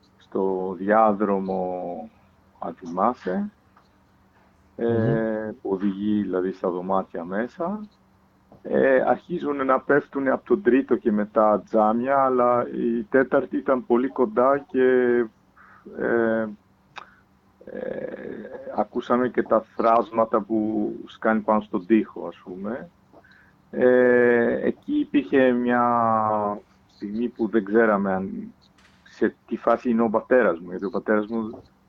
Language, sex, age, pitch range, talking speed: Greek, male, 50-69, 95-120 Hz, 115 wpm